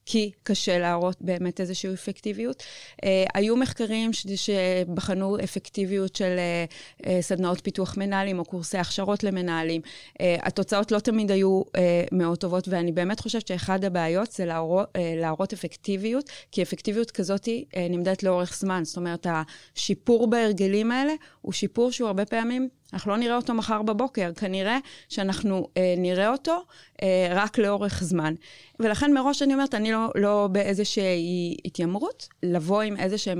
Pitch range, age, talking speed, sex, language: 175-205 Hz, 30-49, 135 wpm, female, Hebrew